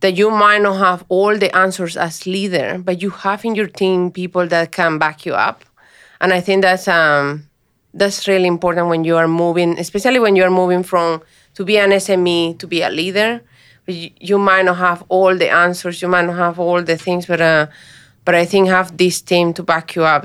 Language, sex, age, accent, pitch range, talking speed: English, female, 30-49, Spanish, 165-190 Hz, 220 wpm